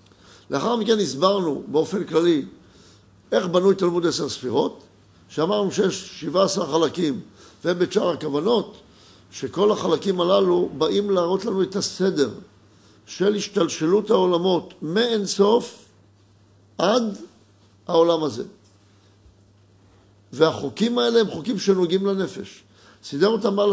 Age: 50-69